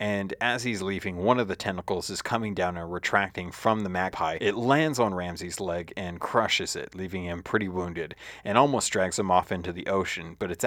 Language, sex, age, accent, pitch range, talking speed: English, male, 30-49, American, 90-105 Hz, 215 wpm